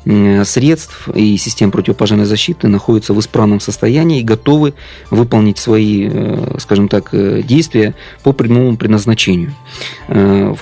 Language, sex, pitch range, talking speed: Russian, male, 105-120 Hz, 115 wpm